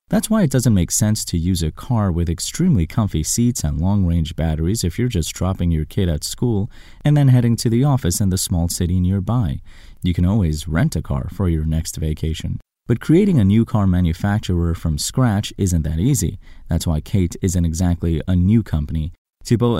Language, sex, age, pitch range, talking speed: English, male, 30-49, 80-110 Hz, 200 wpm